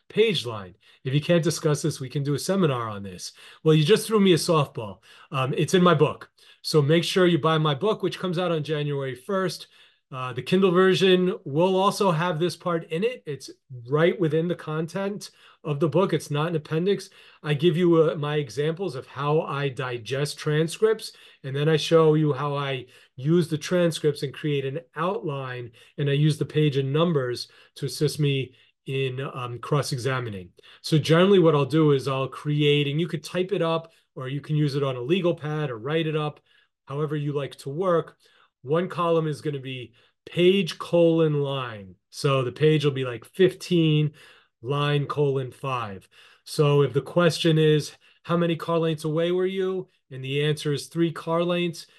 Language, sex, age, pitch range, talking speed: English, male, 30-49, 140-170 Hz, 195 wpm